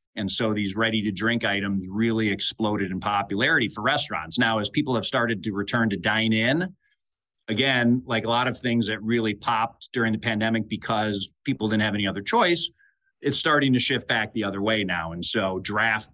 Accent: American